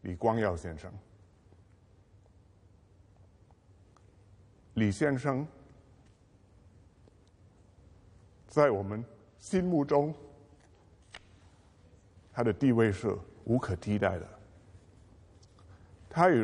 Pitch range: 95-135 Hz